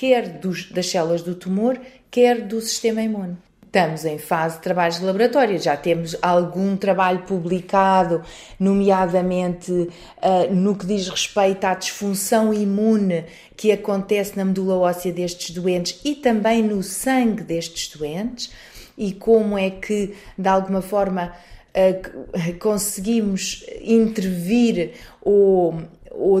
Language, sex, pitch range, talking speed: Portuguese, female, 175-210 Hz, 120 wpm